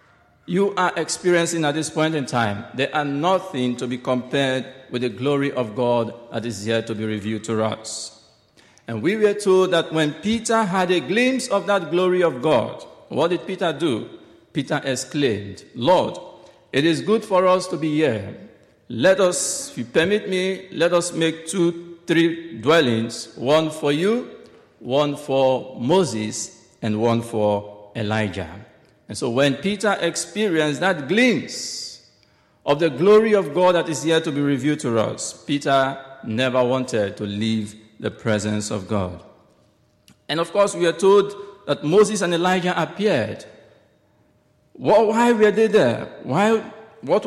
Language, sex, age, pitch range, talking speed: English, male, 50-69, 130-185 Hz, 160 wpm